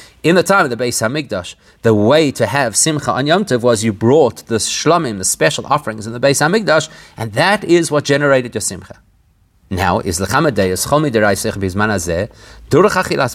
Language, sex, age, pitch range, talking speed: English, male, 30-49, 115-160 Hz, 170 wpm